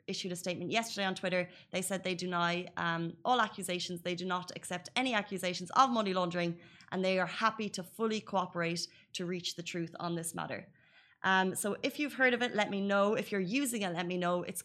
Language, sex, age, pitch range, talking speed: Arabic, female, 20-39, 175-205 Hz, 220 wpm